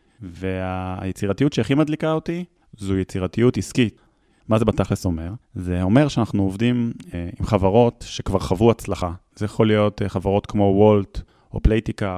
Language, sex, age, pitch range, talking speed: English, male, 30-49, 95-120 Hz, 150 wpm